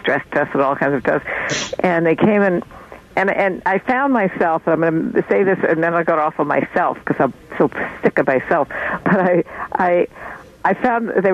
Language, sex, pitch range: English, female, 160-205 Hz